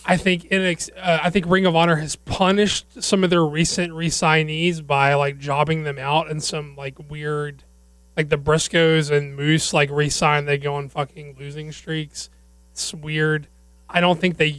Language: English